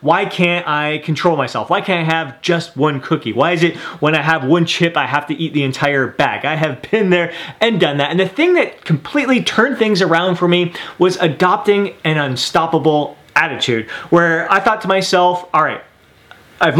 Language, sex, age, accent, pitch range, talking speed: English, male, 30-49, American, 150-190 Hz, 205 wpm